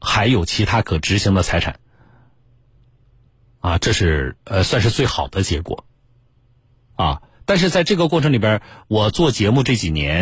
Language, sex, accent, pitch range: Chinese, male, native, 90-120 Hz